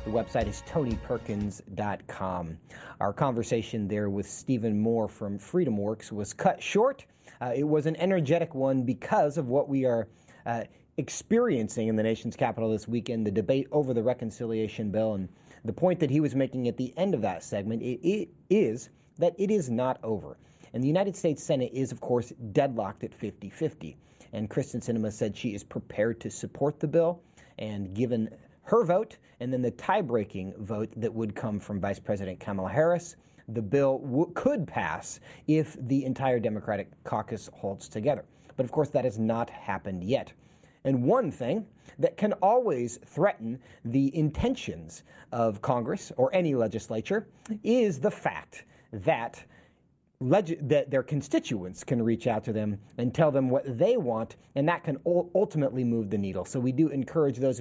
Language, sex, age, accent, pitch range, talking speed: English, male, 30-49, American, 110-150 Hz, 170 wpm